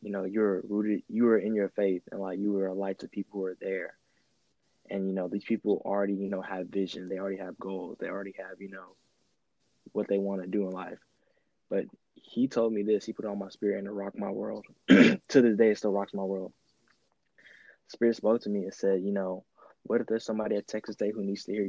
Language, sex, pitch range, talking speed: English, male, 95-105 Hz, 245 wpm